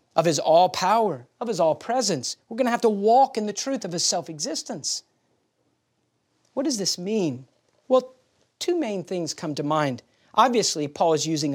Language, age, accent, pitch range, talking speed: English, 40-59, American, 150-215 Hz, 170 wpm